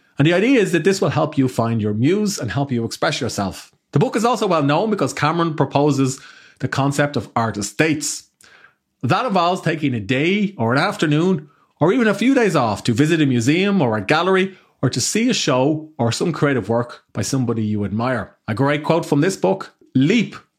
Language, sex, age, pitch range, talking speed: English, male, 30-49, 130-175 Hz, 210 wpm